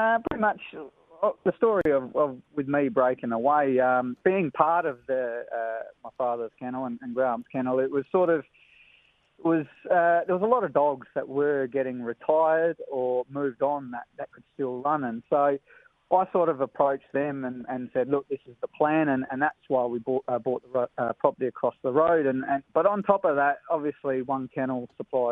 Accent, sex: Australian, male